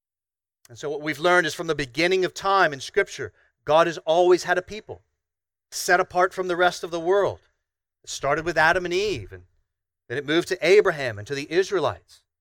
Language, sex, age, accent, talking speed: English, male, 40-59, American, 210 wpm